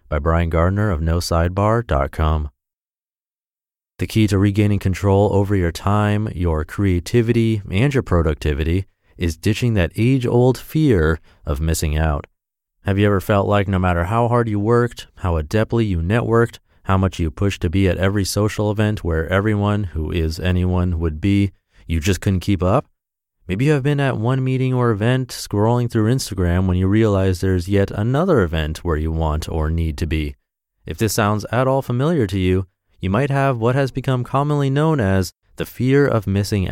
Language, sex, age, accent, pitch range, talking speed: English, male, 30-49, American, 85-115 Hz, 180 wpm